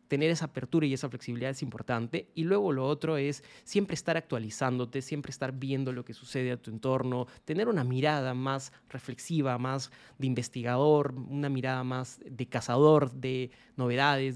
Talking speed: 165 wpm